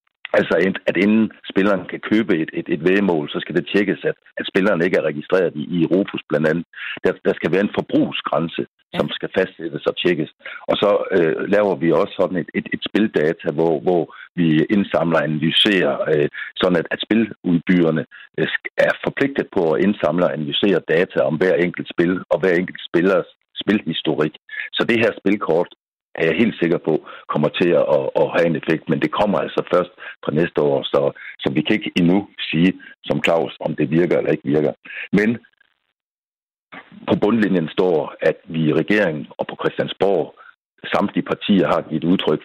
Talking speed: 180 wpm